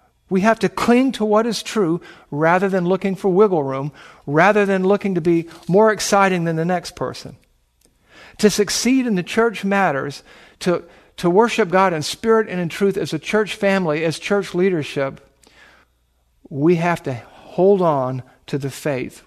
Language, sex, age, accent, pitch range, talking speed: English, male, 50-69, American, 145-200 Hz, 170 wpm